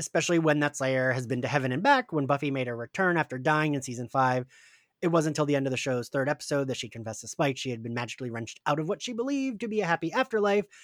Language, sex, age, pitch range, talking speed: English, male, 30-49, 130-170 Hz, 275 wpm